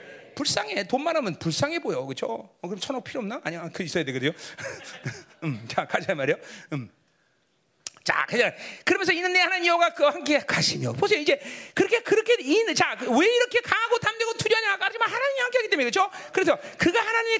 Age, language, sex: 40-59, Korean, male